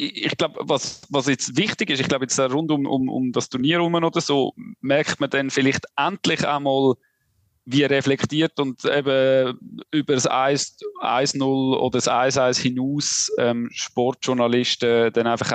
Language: German